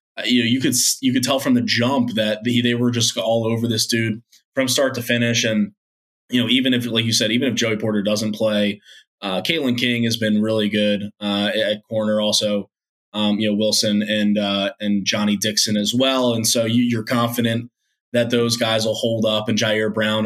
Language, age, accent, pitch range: English, 20-39, American, 105-120 Hz